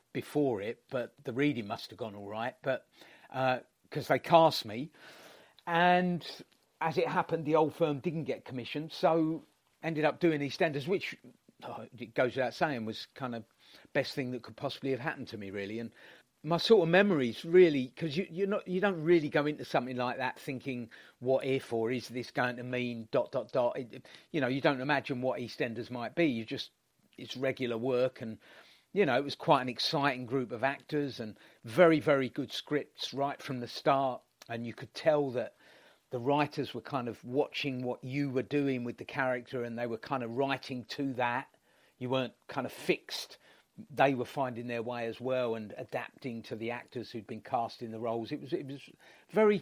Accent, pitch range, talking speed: British, 120-155 Hz, 200 wpm